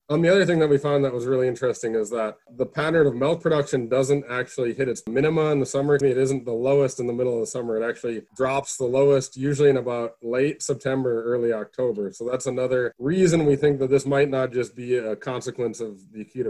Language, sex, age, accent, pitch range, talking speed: English, male, 20-39, American, 115-135 Hz, 235 wpm